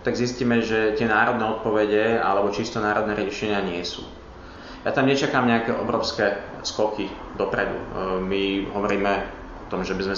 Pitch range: 100-115 Hz